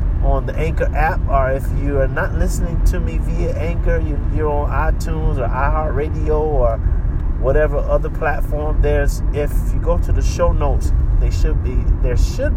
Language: English